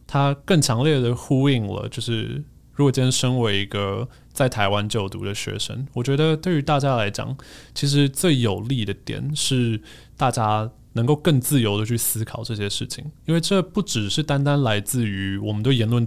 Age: 20-39